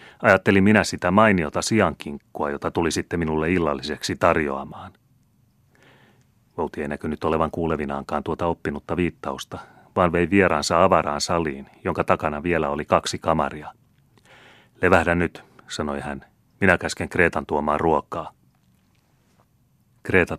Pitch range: 75-95 Hz